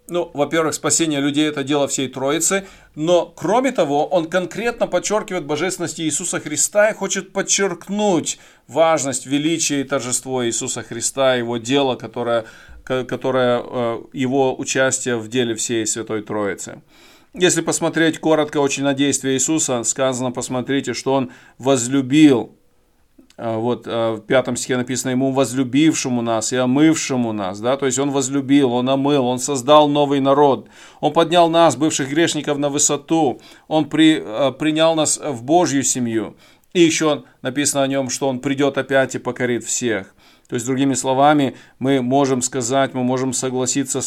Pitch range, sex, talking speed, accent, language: 130-155 Hz, male, 140 wpm, native, Russian